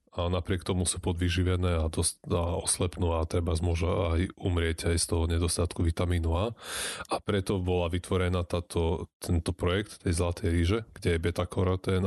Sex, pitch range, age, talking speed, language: male, 85-95 Hz, 20-39, 170 wpm, Slovak